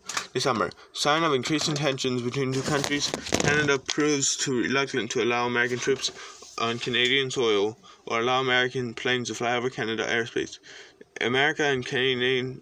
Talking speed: 145 wpm